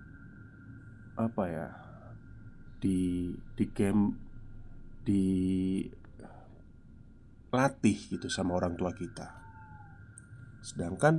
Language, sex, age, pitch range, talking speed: Indonesian, male, 20-39, 100-125 Hz, 70 wpm